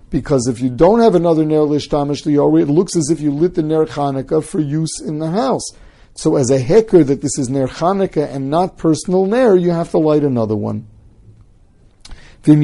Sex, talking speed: male, 205 wpm